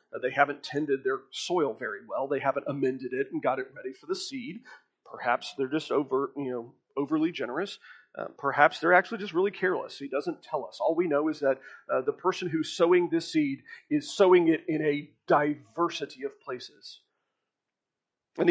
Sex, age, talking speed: male, 40-59, 190 wpm